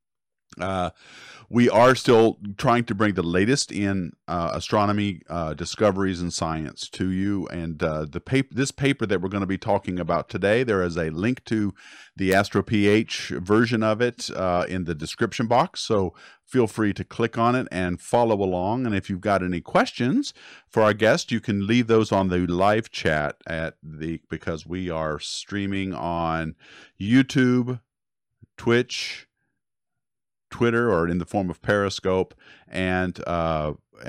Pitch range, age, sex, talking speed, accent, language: 85-110 Hz, 50-69, male, 160 wpm, American, English